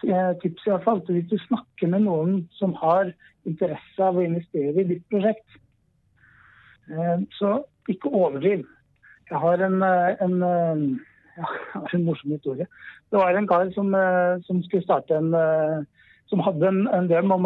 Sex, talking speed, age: male, 160 wpm, 60-79